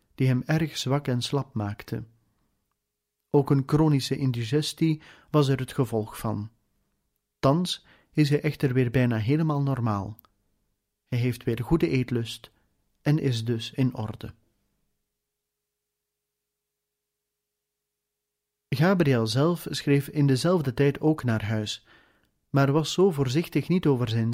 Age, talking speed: 40-59, 125 wpm